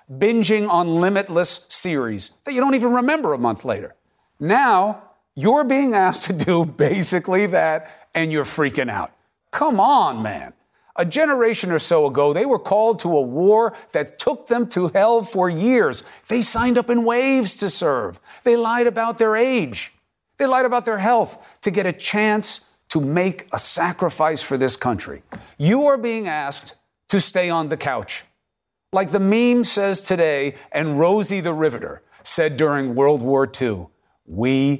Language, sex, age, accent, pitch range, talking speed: English, male, 50-69, American, 150-230 Hz, 165 wpm